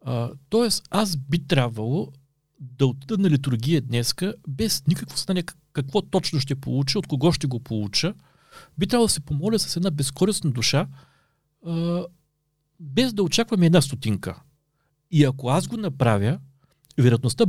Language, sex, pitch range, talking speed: Bulgarian, male, 135-170 Hz, 150 wpm